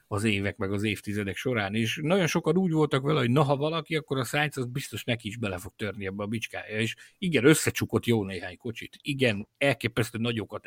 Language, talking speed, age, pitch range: Hungarian, 210 wpm, 50-69, 110-155 Hz